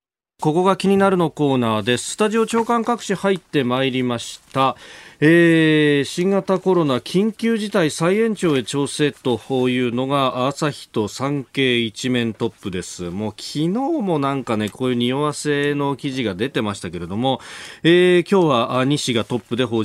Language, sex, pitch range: Japanese, male, 115-175 Hz